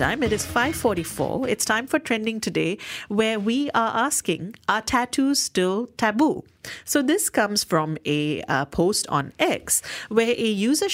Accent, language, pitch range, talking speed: Indian, English, 165-245 Hz, 160 wpm